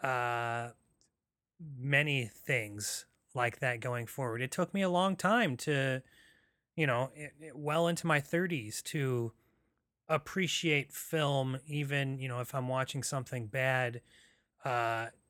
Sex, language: male, English